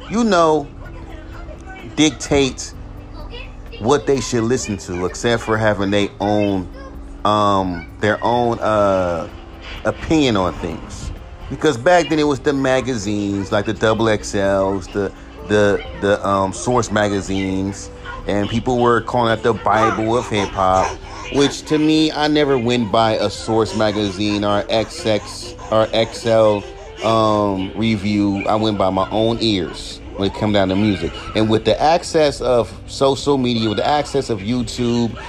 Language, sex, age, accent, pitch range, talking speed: English, male, 30-49, American, 100-125 Hz, 145 wpm